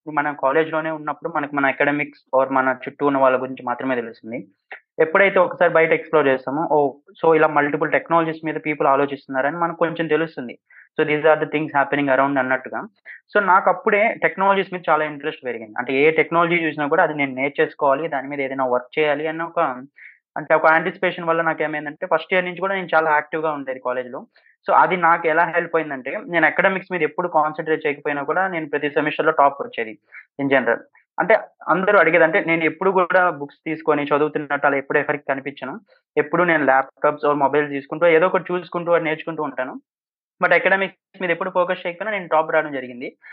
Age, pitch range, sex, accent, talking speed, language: 20-39, 145-175 Hz, male, native, 185 wpm, Telugu